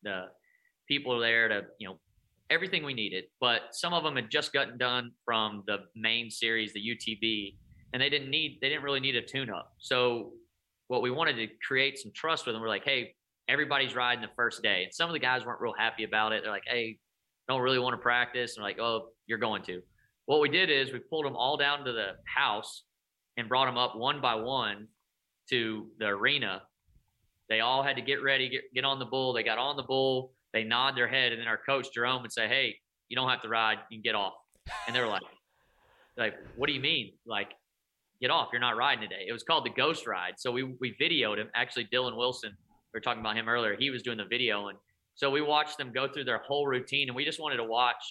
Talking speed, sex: 240 wpm, male